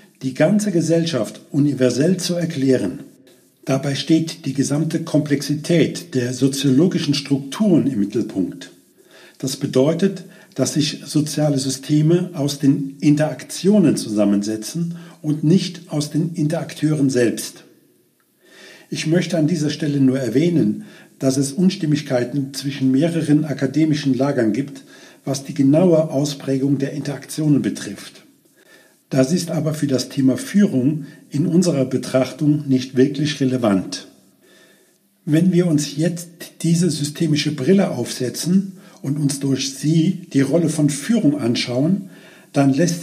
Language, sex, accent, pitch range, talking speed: German, male, German, 135-165 Hz, 120 wpm